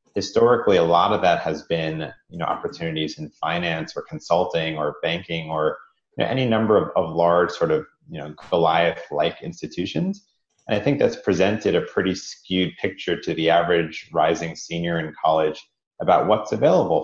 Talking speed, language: 165 wpm, English